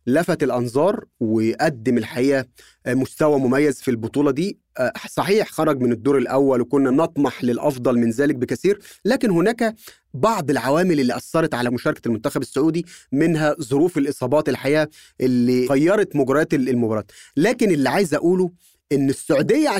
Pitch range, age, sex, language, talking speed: 145-200 Hz, 30-49, male, Arabic, 135 wpm